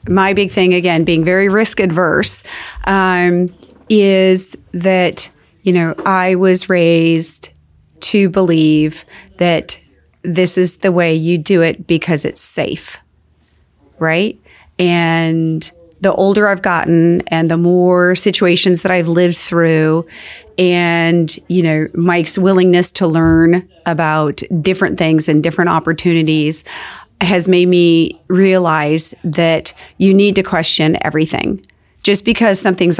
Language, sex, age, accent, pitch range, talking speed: English, female, 30-49, American, 165-190 Hz, 125 wpm